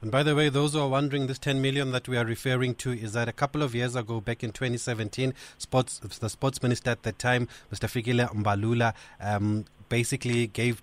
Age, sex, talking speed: 30-49, male, 210 wpm